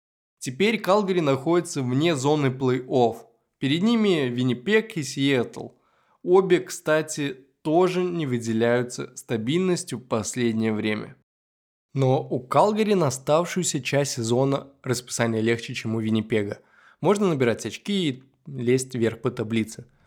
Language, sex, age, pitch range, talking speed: Russian, male, 20-39, 115-165 Hz, 120 wpm